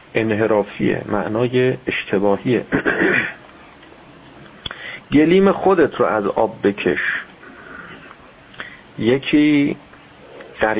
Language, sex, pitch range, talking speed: Persian, male, 110-155 Hz, 60 wpm